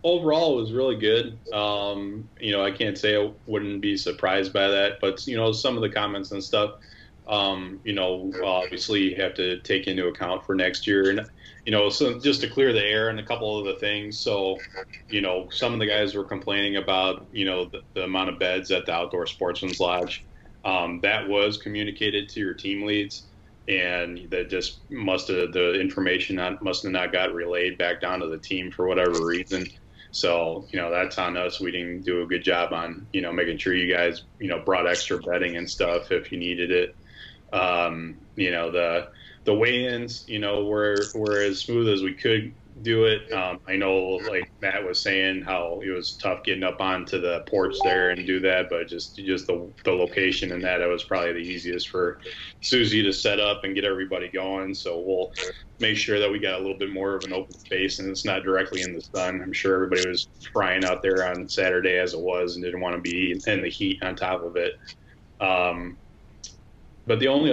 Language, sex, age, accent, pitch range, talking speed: English, male, 30-49, American, 90-105 Hz, 215 wpm